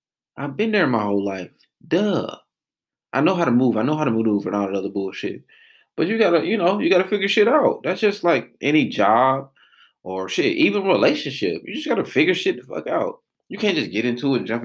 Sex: male